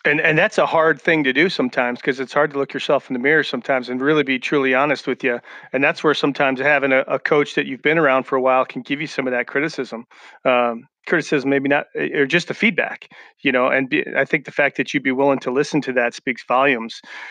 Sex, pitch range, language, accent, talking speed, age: male, 130-140 Hz, English, American, 255 wpm, 40-59